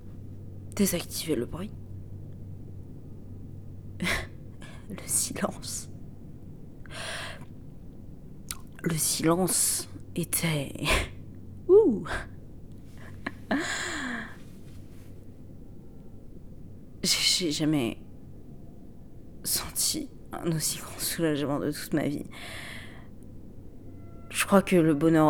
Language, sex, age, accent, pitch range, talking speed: French, female, 30-49, French, 95-155 Hz, 60 wpm